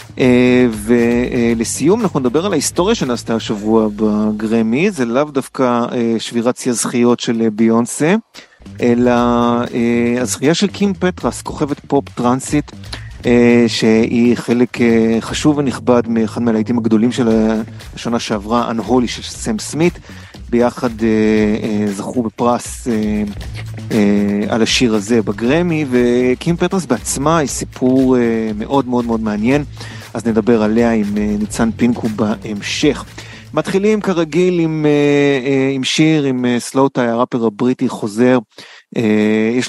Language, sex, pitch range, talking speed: Hebrew, male, 110-130 Hz, 130 wpm